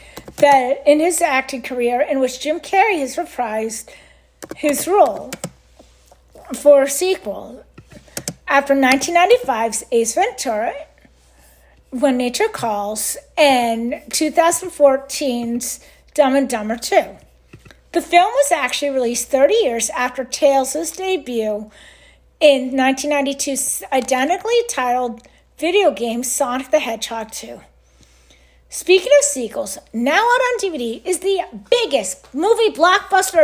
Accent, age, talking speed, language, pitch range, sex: American, 50-69, 110 wpm, English, 245-340 Hz, female